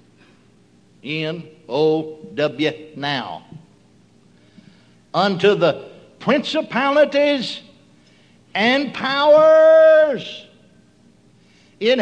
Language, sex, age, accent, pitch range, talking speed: English, male, 60-79, American, 155-235 Hz, 50 wpm